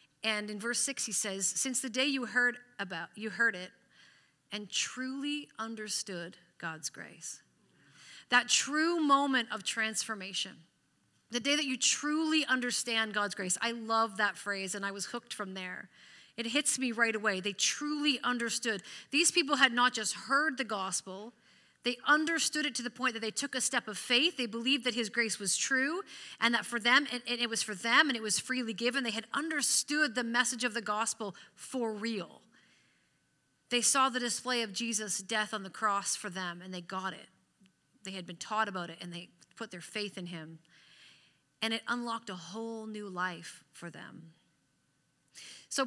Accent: American